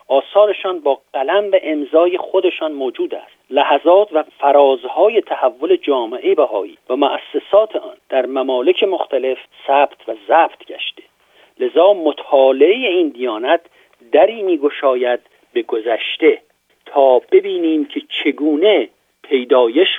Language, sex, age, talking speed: Persian, male, 50-69, 110 wpm